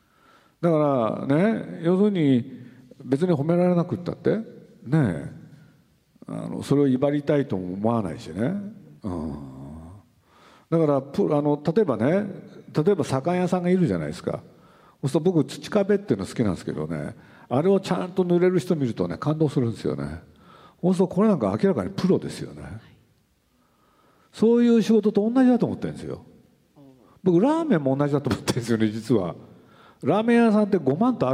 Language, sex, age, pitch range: Japanese, male, 50-69, 110-180 Hz